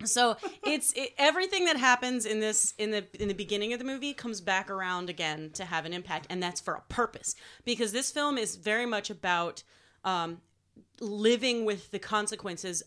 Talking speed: 190 wpm